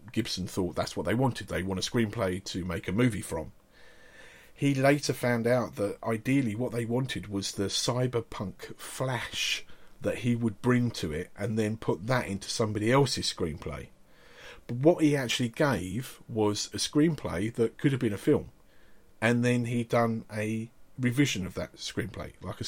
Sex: male